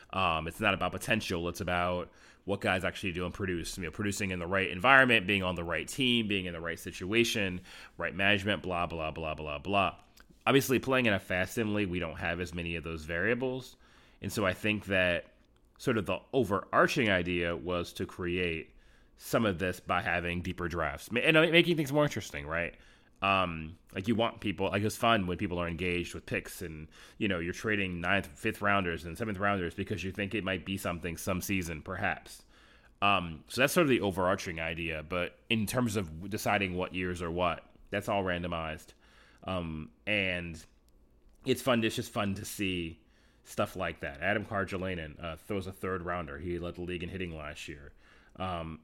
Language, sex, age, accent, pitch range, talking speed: English, male, 30-49, American, 85-105 Hz, 195 wpm